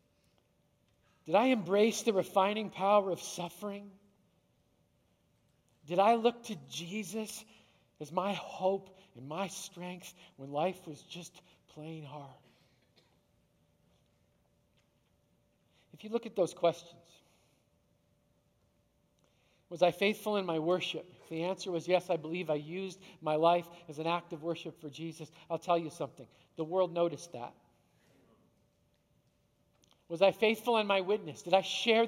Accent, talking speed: American, 135 wpm